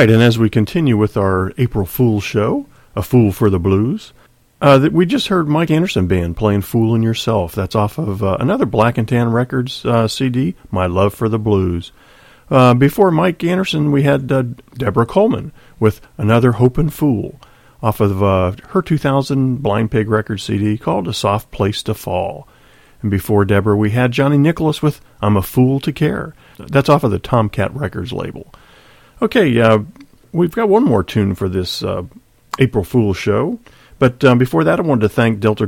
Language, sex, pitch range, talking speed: English, male, 105-135 Hz, 190 wpm